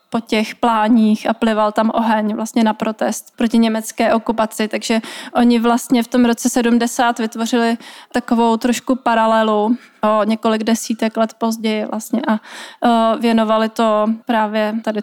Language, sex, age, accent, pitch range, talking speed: Czech, female, 30-49, native, 220-235 Hz, 135 wpm